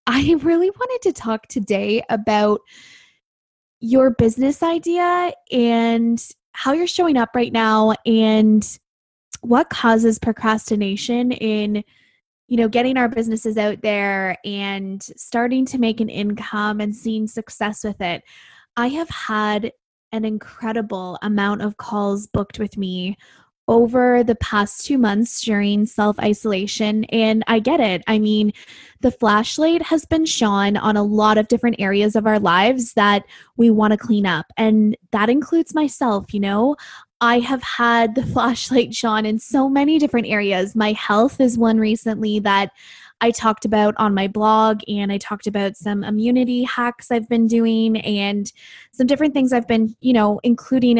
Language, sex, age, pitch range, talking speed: English, female, 10-29, 210-245 Hz, 155 wpm